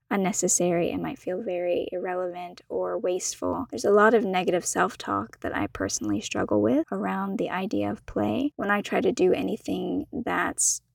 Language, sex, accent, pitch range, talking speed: English, female, American, 185-235 Hz, 170 wpm